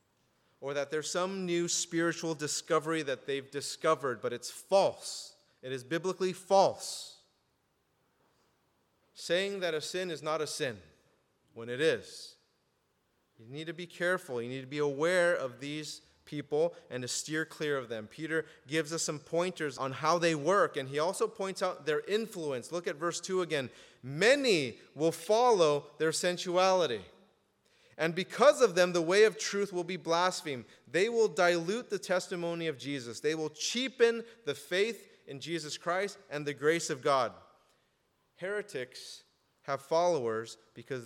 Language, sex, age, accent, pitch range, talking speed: English, male, 30-49, American, 140-180 Hz, 160 wpm